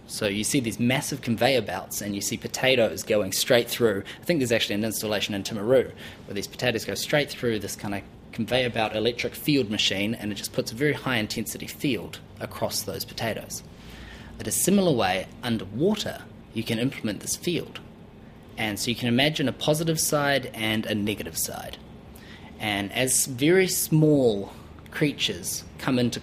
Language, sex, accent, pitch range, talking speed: English, male, Australian, 105-130 Hz, 175 wpm